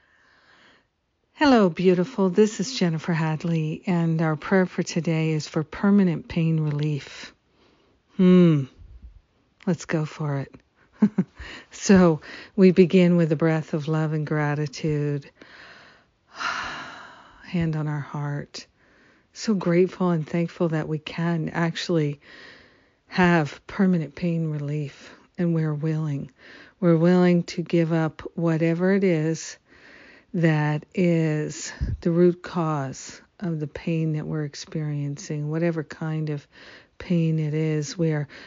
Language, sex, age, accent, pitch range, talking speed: English, female, 50-69, American, 155-175 Hz, 120 wpm